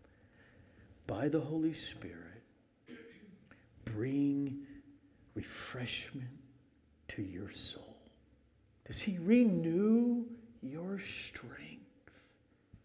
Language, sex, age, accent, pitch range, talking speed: English, male, 50-69, American, 110-140 Hz, 65 wpm